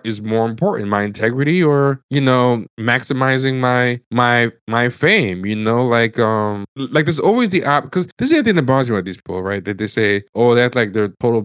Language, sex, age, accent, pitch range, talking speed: English, male, 20-39, American, 105-135 Hz, 220 wpm